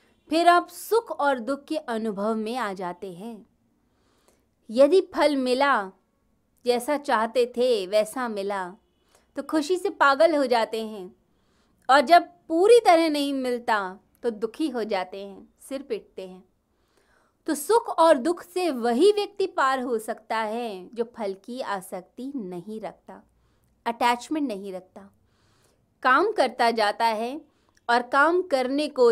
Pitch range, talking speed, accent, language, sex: 205-305 Hz, 140 wpm, native, Hindi, female